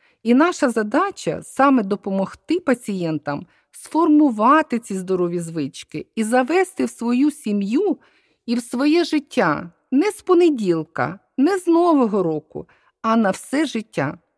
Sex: female